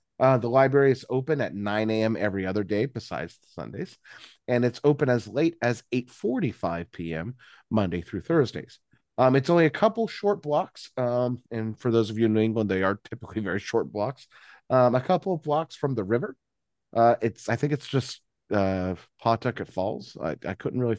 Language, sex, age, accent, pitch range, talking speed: English, male, 30-49, American, 100-135 Hz, 190 wpm